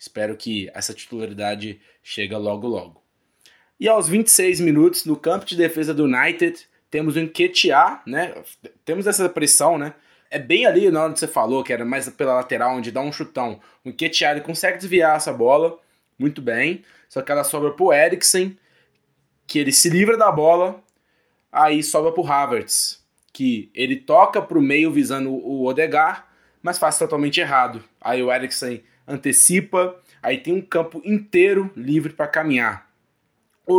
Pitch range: 130-185 Hz